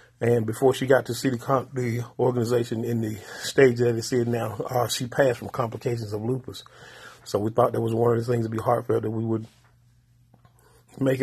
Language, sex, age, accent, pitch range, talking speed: English, male, 30-49, American, 110-125 Hz, 215 wpm